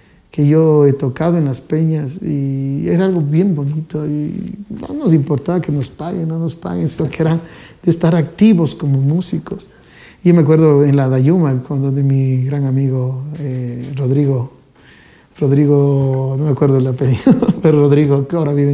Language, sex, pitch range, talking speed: Spanish, male, 140-170 Hz, 175 wpm